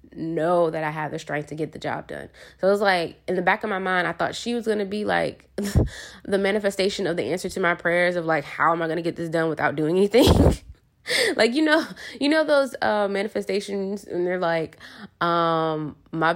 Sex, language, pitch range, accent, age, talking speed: female, English, 160-200 Hz, American, 20-39, 225 wpm